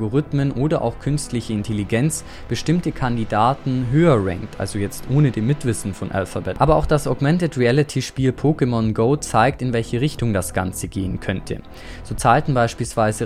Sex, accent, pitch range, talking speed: male, German, 110-140 Hz, 155 wpm